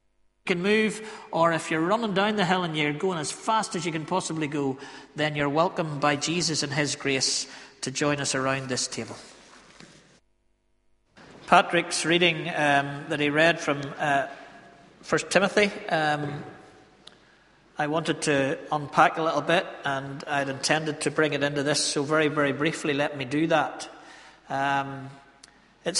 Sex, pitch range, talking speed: male, 145-175 Hz, 160 wpm